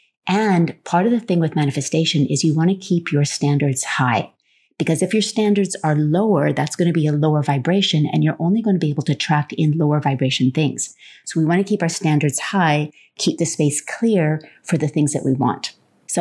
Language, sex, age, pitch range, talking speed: English, female, 30-49, 150-185 Hz, 220 wpm